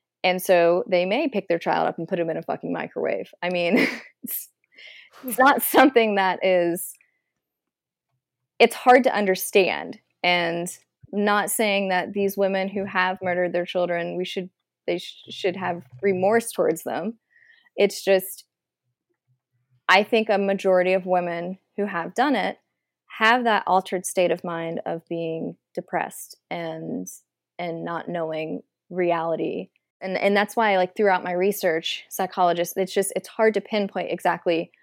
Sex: female